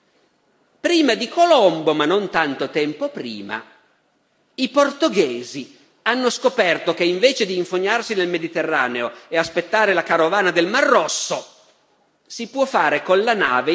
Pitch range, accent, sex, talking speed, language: 165-265 Hz, native, male, 135 wpm, Italian